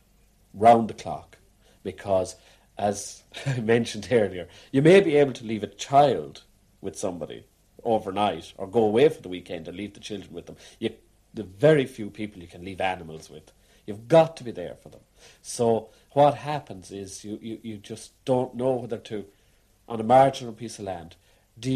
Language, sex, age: English, male, 50-69